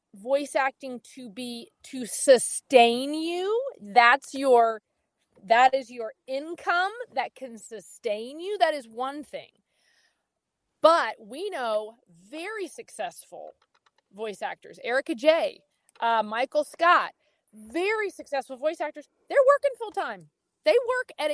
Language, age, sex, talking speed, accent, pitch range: English, 30-49, female, 120 wpm, American, 235-330 Hz